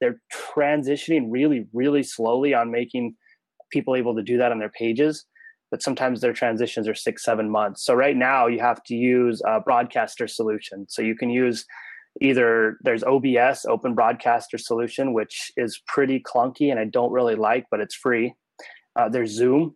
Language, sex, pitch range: English, male, 110-135 Hz